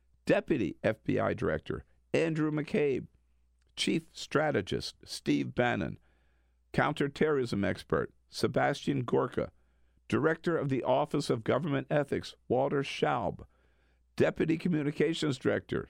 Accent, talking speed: American, 95 wpm